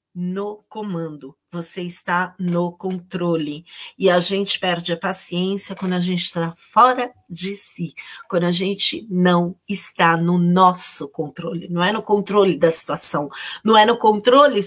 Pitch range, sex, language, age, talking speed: 175-230 Hz, female, Portuguese, 40-59, 150 wpm